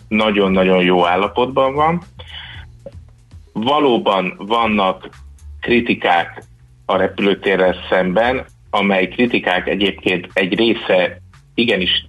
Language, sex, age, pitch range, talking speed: Hungarian, male, 30-49, 85-105 Hz, 80 wpm